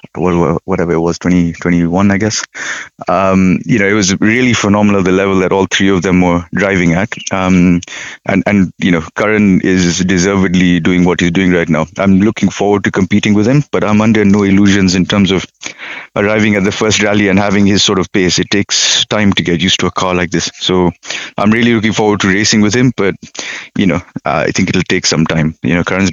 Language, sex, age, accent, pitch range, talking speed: English, male, 30-49, Indian, 90-105 Hz, 225 wpm